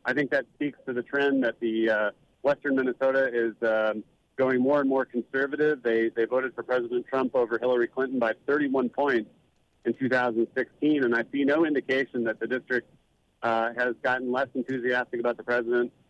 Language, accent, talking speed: English, American, 185 wpm